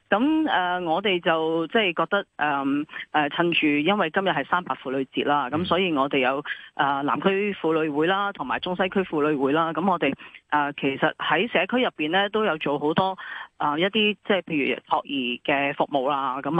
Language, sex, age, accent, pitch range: Chinese, female, 30-49, native, 145-195 Hz